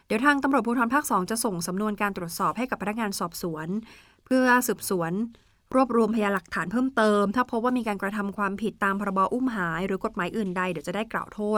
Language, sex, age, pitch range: Thai, female, 20-39, 190-235 Hz